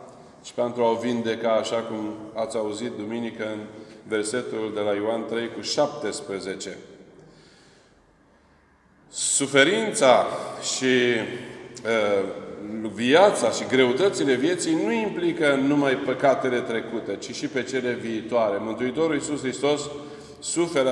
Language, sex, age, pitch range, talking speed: Romanian, male, 40-59, 115-140 Hz, 110 wpm